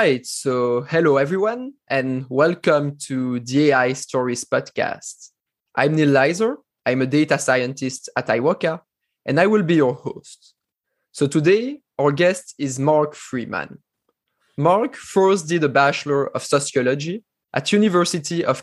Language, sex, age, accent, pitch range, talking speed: English, male, 20-39, French, 130-170 Hz, 140 wpm